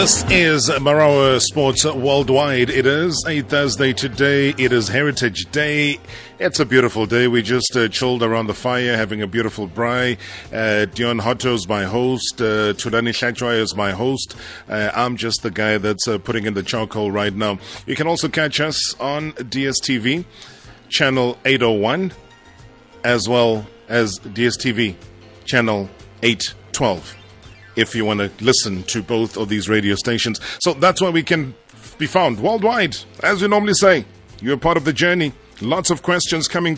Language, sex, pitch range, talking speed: English, male, 105-135 Hz, 165 wpm